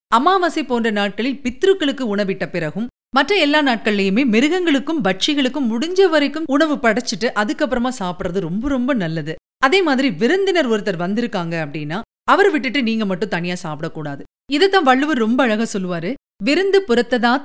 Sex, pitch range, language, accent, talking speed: female, 185-285 Hz, Tamil, native, 135 wpm